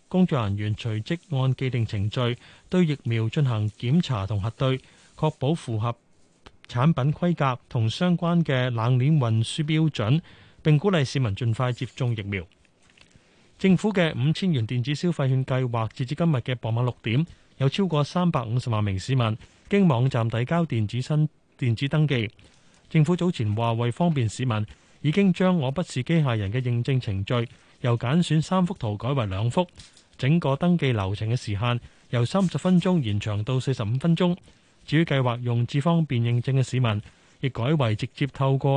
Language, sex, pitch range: Chinese, male, 115-155 Hz